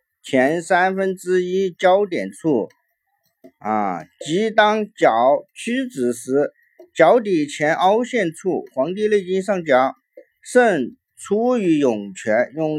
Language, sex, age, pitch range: Chinese, male, 50-69, 160-260 Hz